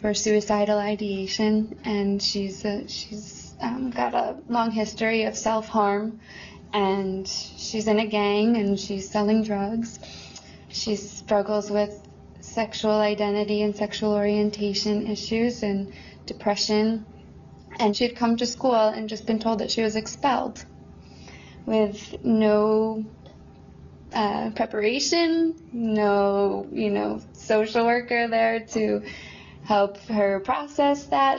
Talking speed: 120 wpm